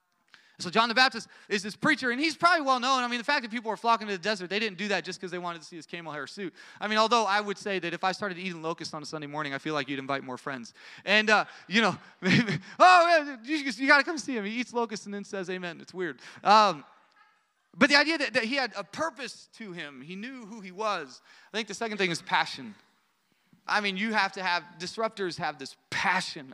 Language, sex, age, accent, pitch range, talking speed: English, male, 30-49, American, 150-215 Hz, 255 wpm